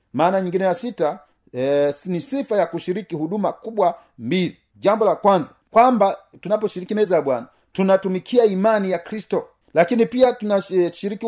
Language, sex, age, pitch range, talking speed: Swahili, male, 40-59, 140-195 Hz, 145 wpm